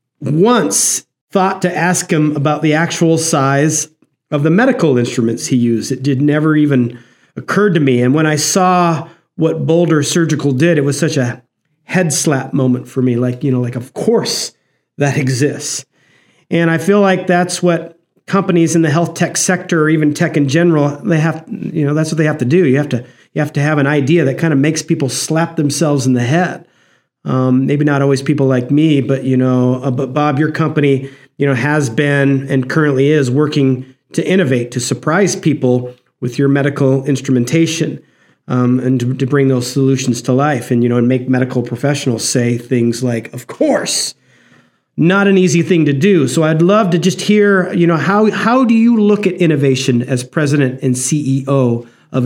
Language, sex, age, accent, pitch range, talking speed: English, male, 40-59, American, 130-165 Hz, 195 wpm